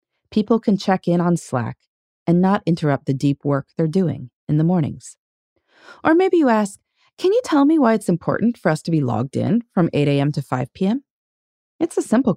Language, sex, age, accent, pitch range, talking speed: English, female, 30-49, American, 145-230 Hz, 210 wpm